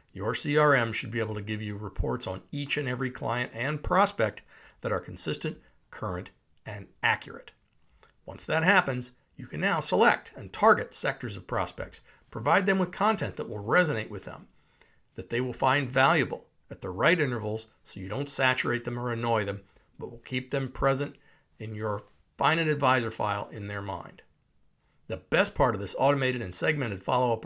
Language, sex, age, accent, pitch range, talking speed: English, male, 60-79, American, 110-135 Hz, 180 wpm